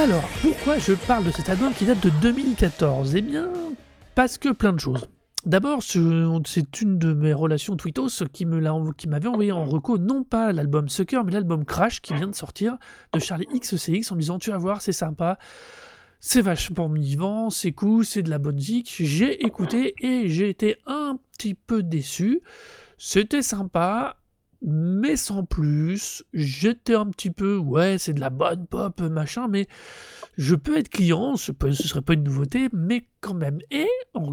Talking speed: 185 wpm